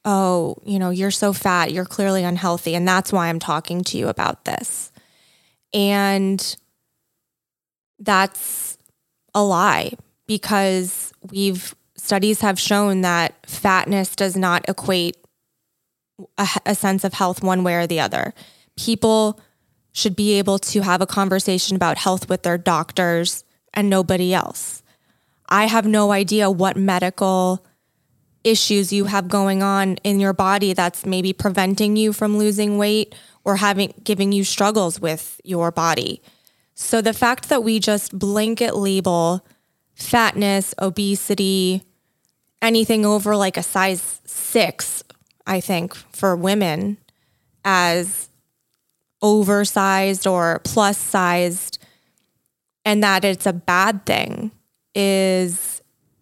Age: 20-39